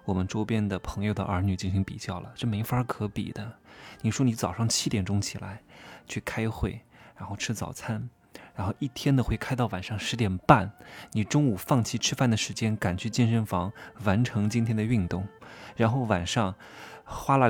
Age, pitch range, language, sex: 20-39, 95-115 Hz, Chinese, male